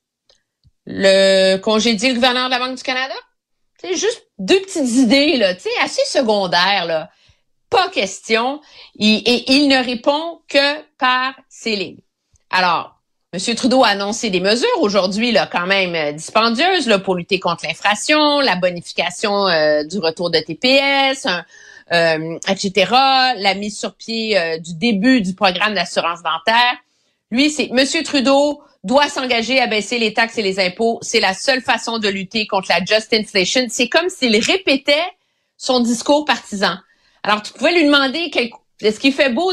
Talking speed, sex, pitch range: 160 wpm, female, 205-280 Hz